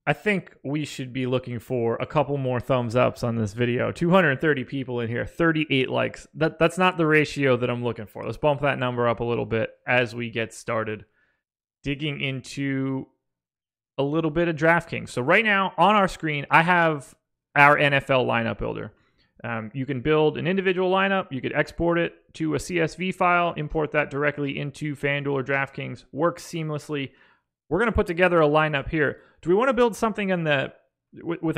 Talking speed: 190 wpm